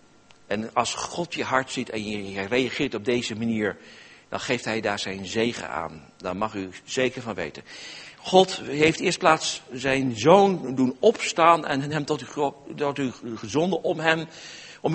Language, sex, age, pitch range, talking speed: Dutch, male, 60-79, 130-175 Hz, 165 wpm